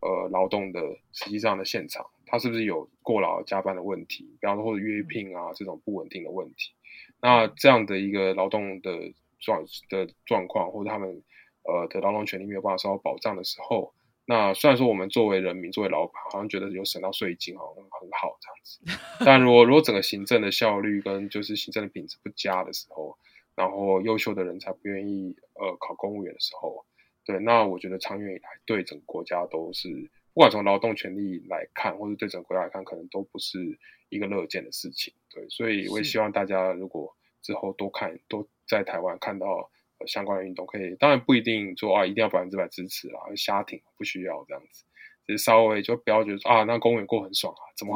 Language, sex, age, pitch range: Chinese, male, 20-39, 95-110 Hz